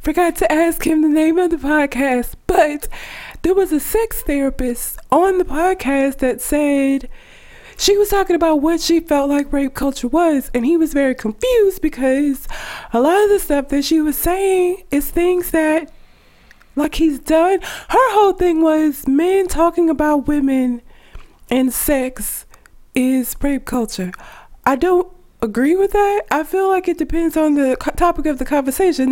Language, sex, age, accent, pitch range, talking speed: English, female, 20-39, American, 280-365 Hz, 165 wpm